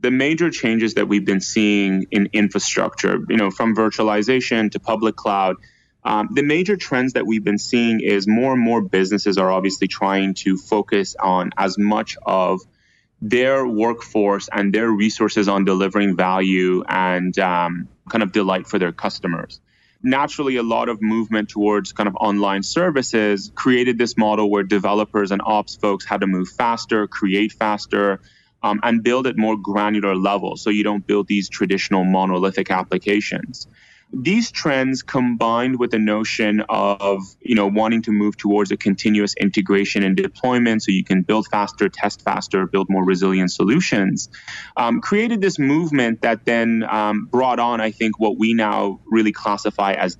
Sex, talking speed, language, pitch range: male, 165 wpm, English, 100-115 Hz